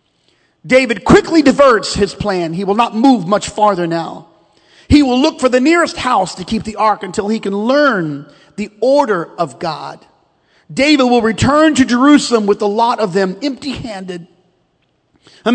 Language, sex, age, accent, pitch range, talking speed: English, male, 40-59, American, 170-245 Hz, 165 wpm